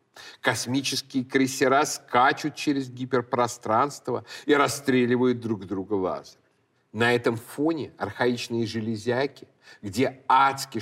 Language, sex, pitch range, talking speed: Russian, male, 115-140 Hz, 95 wpm